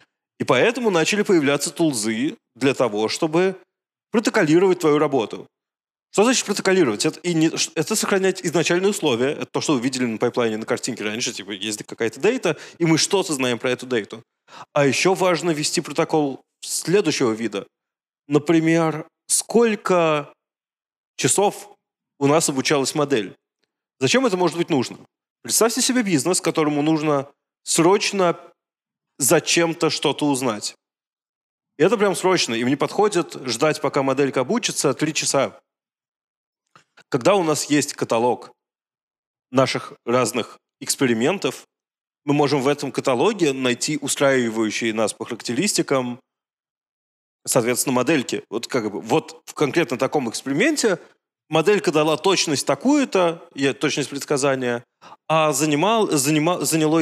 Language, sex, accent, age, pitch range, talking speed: Russian, male, native, 20-39, 140-175 Hz, 125 wpm